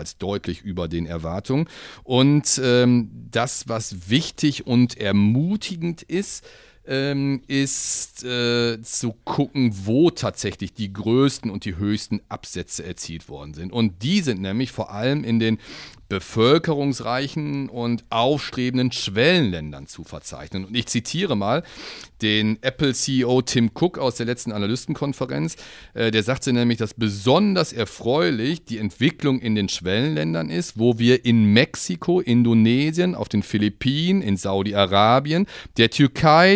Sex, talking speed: male, 130 wpm